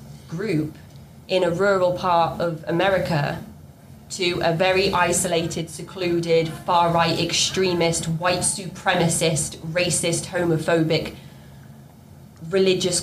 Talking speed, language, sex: 85 wpm, English, female